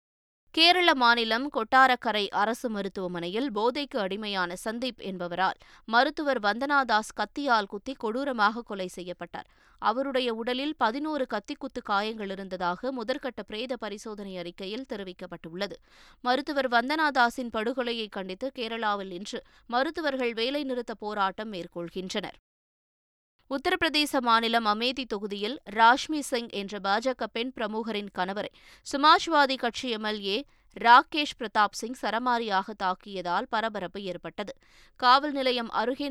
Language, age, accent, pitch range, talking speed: Tamil, 20-39, native, 200-260 Hz, 100 wpm